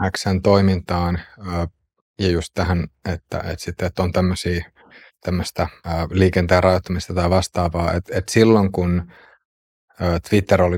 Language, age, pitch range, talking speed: Finnish, 30-49, 90-100 Hz, 115 wpm